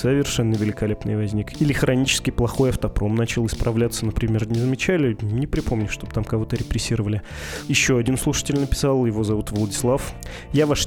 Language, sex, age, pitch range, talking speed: Russian, male, 20-39, 115-135 Hz, 150 wpm